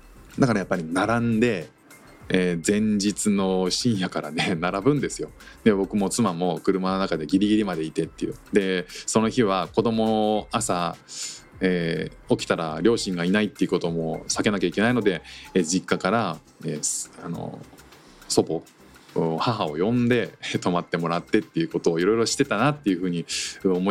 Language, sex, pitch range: Japanese, male, 90-155 Hz